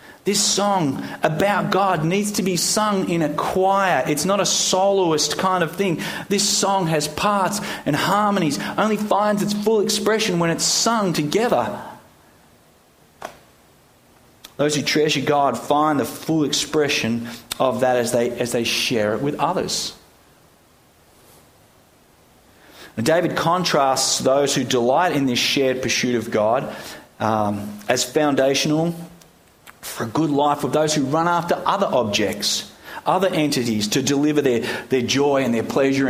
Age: 30-49